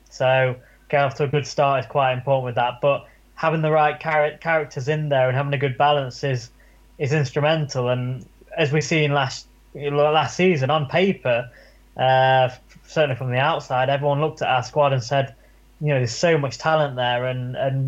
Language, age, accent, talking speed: English, 20-39, British, 195 wpm